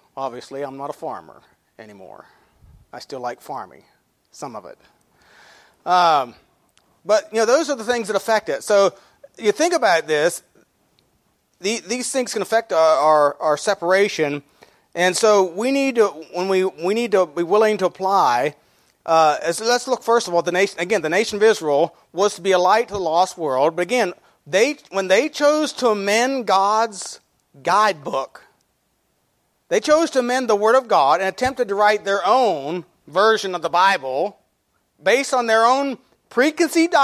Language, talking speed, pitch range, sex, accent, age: English, 175 wpm, 175-250 Hz, male, American, 40-59